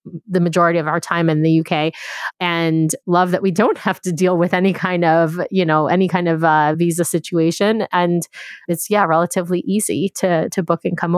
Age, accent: 30-49, American